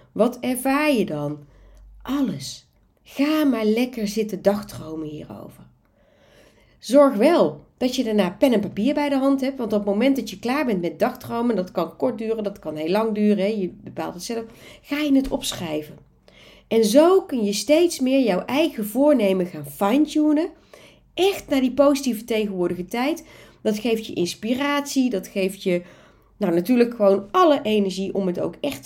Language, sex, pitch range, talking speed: Dutch, female, 195-260 Hz, 175 wpm